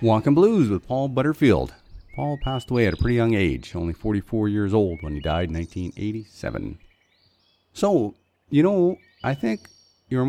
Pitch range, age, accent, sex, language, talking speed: 90-130 Hz, 40-59, American, male, English, 165 wpm